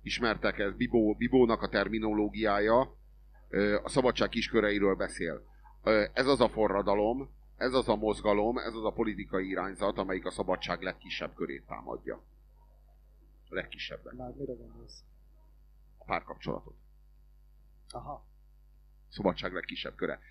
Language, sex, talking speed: Hungarian, male, 115 wpm